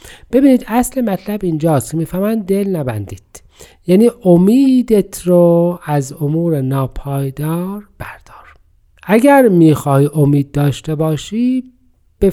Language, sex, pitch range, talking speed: Persian, male, 140-190 Hz, 95 wpm